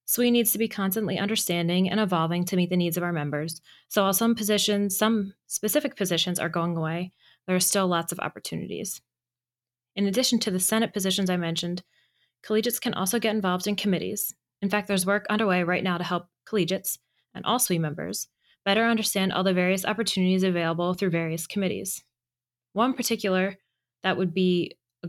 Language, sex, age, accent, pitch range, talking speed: English, female, 20-39, American, 175-205 Hz, 180 wpm